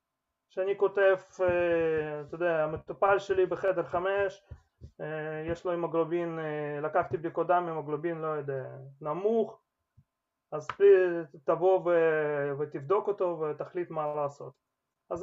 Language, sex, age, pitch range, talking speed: Hebrew, male, 30-49, 150-195 Hz, 110 wpm